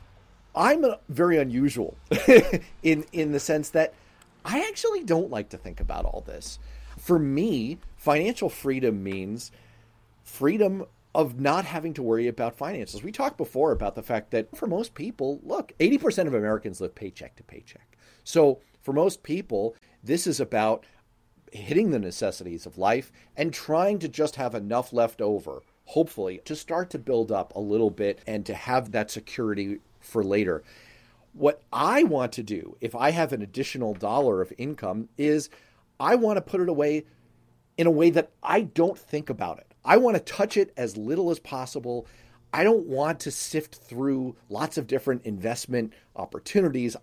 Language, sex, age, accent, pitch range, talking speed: English, male, 40-59, American, 115-160 Hz, 170 wpm